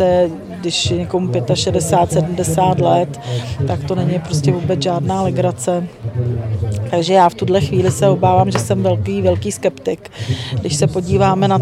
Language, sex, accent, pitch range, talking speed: Czech, female, native, 120-180 Hz, 145 wpm